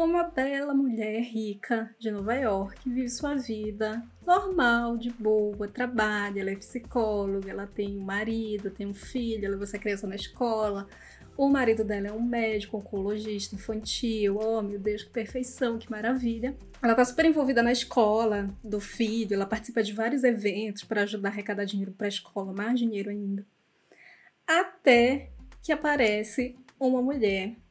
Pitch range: 205-255 Hz